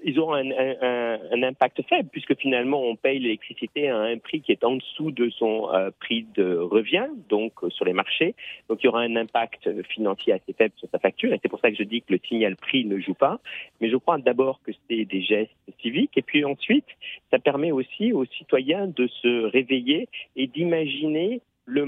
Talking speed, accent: 210 wpm, French